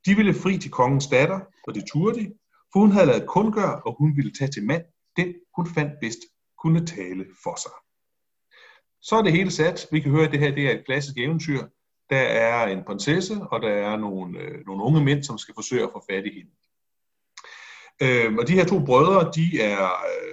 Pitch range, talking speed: 115-180 Hz, 210 wpm